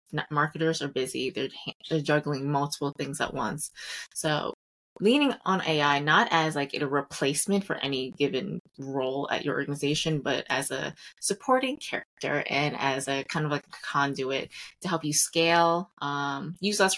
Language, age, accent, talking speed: English, 20-39, American, 165 wpm